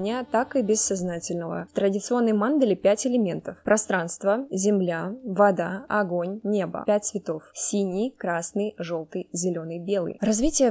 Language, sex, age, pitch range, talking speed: Russian, female, 20-39, 185-220 Hz, 120 wpm